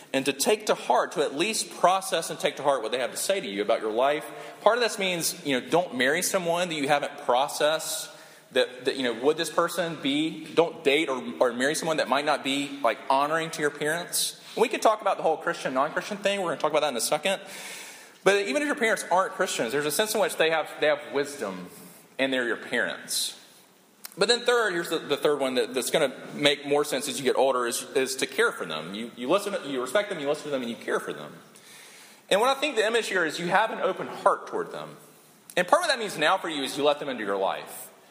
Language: English